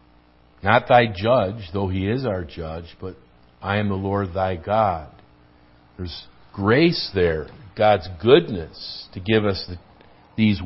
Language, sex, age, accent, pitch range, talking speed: English, male, 50-69, American, 75-105 Hz, 140 wpm